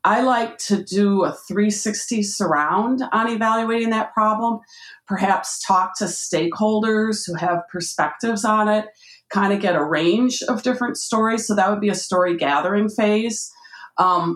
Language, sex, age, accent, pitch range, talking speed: English, female, 40-59, American, 195-240 Hz, 155 wpm